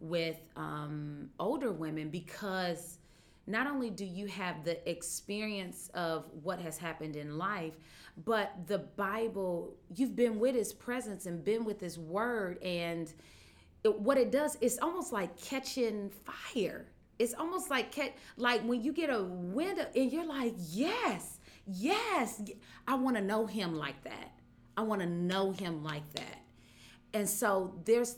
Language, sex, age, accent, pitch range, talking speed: English, female, 30-49, American, 170-225 Hz, 155 wpm